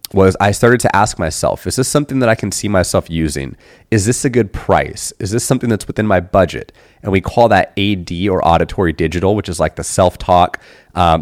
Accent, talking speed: American, 220 wpm